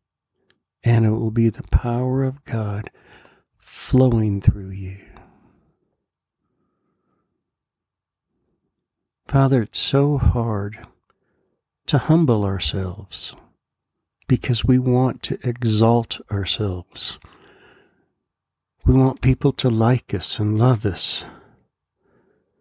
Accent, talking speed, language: American, 90 wpm, English